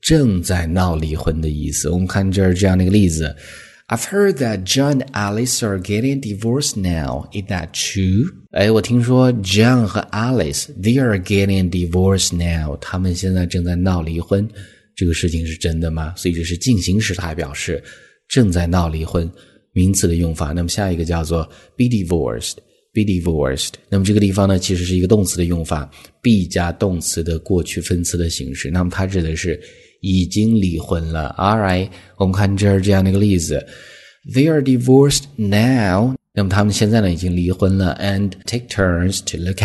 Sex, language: male, Chinese